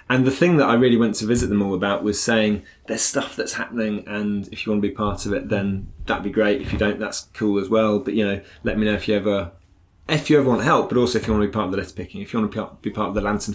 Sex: male